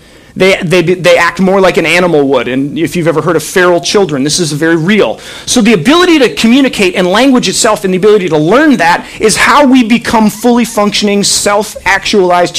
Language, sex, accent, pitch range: English, male, American, 175-225 Hz